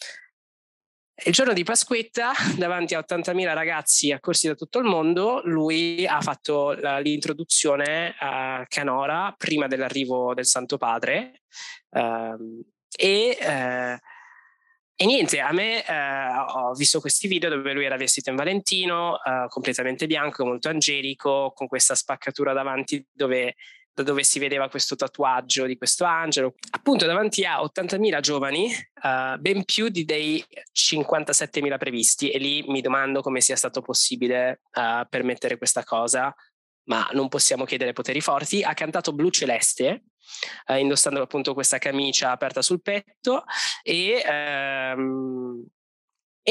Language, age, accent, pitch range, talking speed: Italian, 20-39, native, 135-190 Hz, 130 wpm